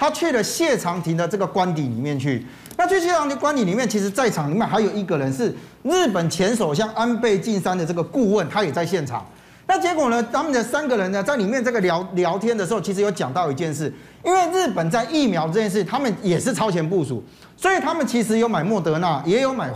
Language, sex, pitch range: Chinese, male, 170-250 Hz